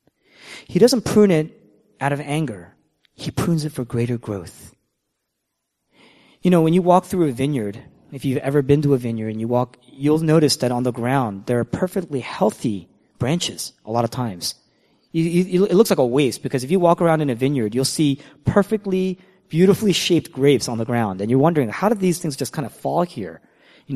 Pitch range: 125-170 Hz